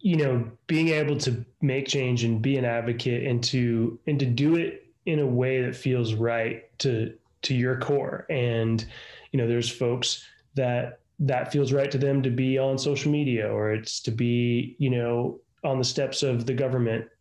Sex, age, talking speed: male, 20-39, 190 wpm